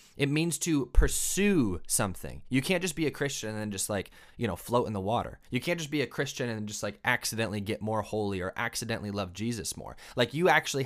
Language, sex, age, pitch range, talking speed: English, male, 20-39, 95-135 Hz, 225 wpm